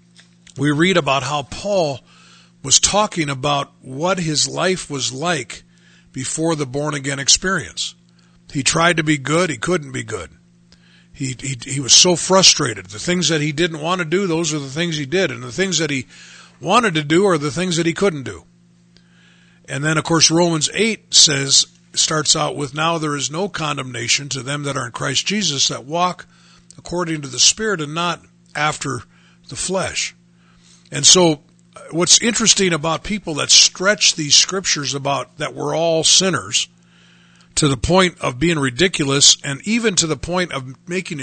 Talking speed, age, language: 180 wpm, 50-69, English